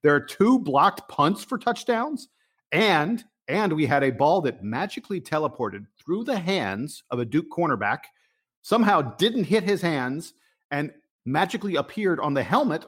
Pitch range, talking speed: 125-195 Hz, 160 wpm